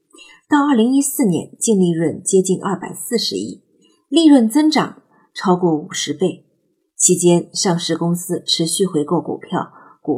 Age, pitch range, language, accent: 50-69, 165-225 Hz, Chinese, native